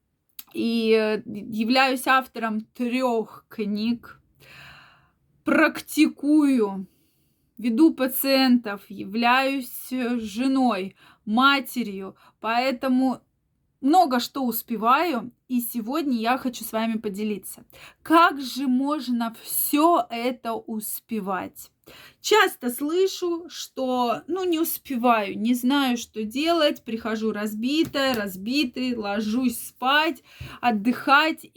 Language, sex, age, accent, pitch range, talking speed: Russian, female, 20-39, native, 220-270 Hz, 85 wpm